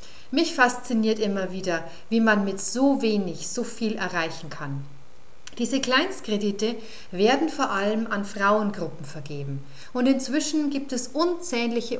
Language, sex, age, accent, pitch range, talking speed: German, female, 40-59, German, 185-265 Hz, 130 wpm